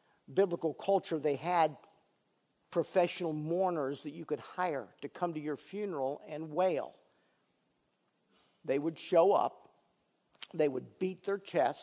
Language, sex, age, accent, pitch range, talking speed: English, male, 50-69, American, 145-185 Hz, 130 wpm